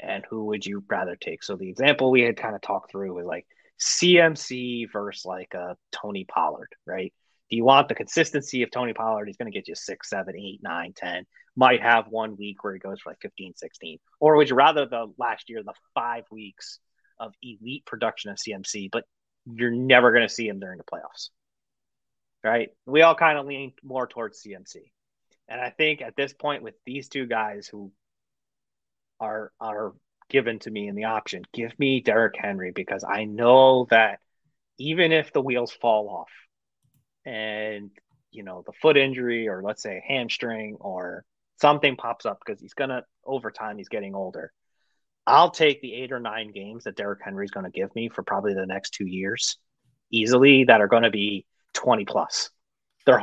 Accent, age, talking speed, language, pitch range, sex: American, 30-49, 195 wpm, English, 105-135 Hz, male